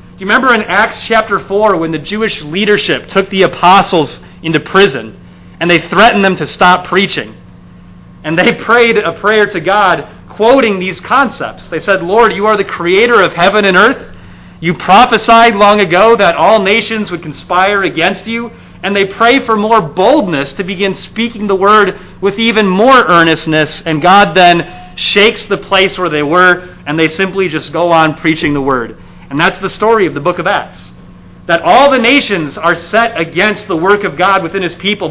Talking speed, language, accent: 190 wpm, English, American